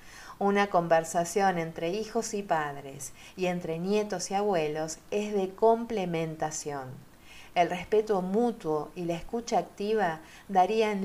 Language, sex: Spanish, female